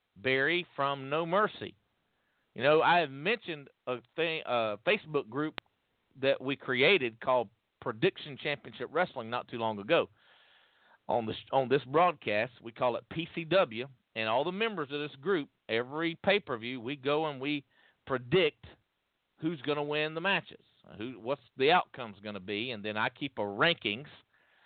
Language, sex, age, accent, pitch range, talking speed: English, male, 50-69, American, 125-160 Hz, 165 wpm